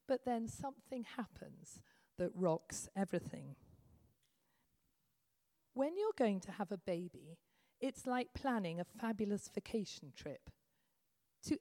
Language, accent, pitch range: English, British, 170-260 Hz